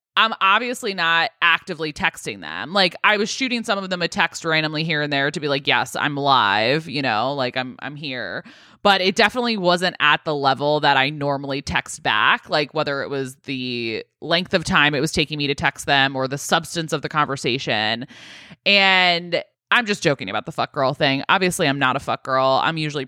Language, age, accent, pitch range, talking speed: English, 20-39, American, 145-195 Hz, 210 wpm